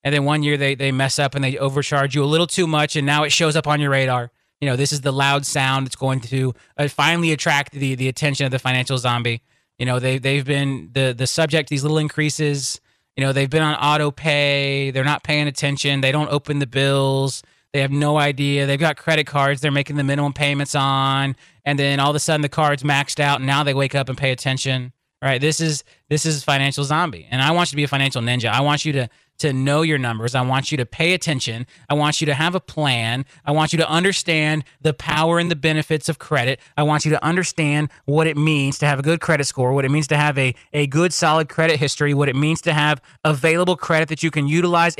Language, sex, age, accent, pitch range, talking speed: English, male, 20-39, American, 135-155 Hz, 250 wpm